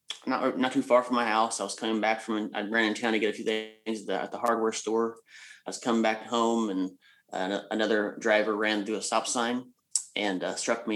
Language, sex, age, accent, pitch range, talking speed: English, male, 30-49, American, 100-110 Hz, 235 wpm